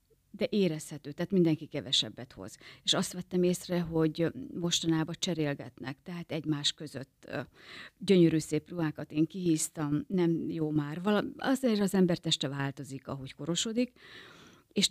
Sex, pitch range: female, 150-175 Hz